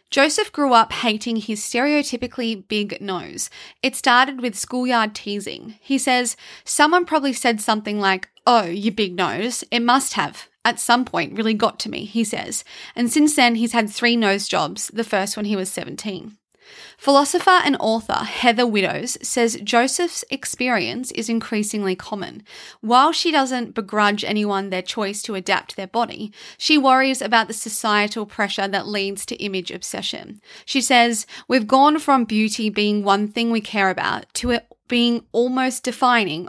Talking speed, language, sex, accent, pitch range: 165 wpm, English, female, Australian, 205-255 Hz